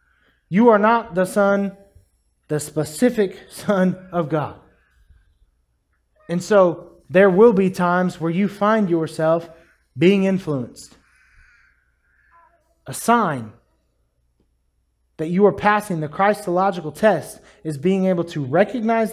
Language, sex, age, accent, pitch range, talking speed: English, male, 20-39, American, 150-200 Hz, 115 wpm